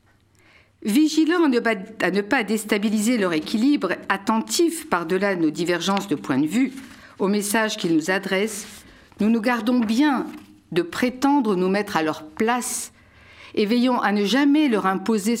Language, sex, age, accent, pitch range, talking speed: French, female, 60-79, French, 170-250 Hz, 150 wpm